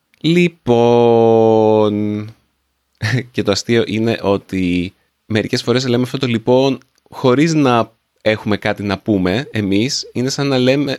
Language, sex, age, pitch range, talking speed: Greek, male, 30-49, 95-125 Hz, 125 wpm